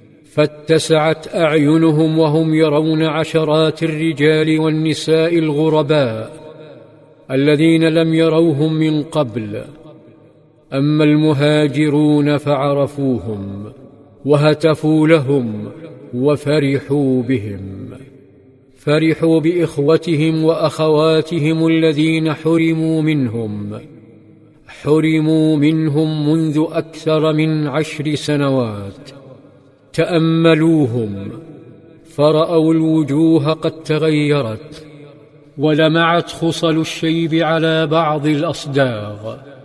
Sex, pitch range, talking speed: male, 145-160 Hz, 65 wpm